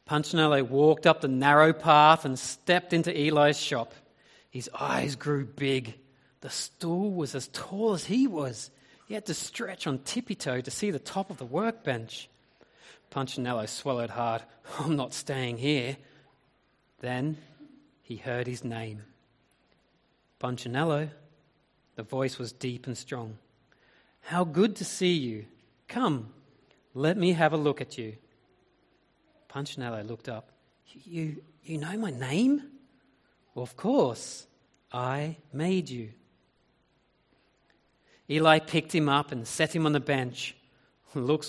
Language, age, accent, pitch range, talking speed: English, 30-49, Australian, 125-160 Hz, 135 wpm